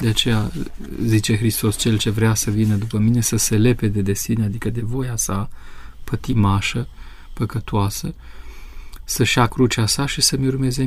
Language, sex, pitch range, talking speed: Romanian, male, 100-120 Hz, 160 wpm